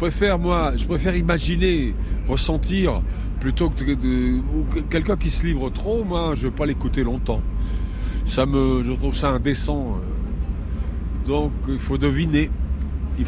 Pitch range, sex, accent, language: 75-95 Hz, male, French, French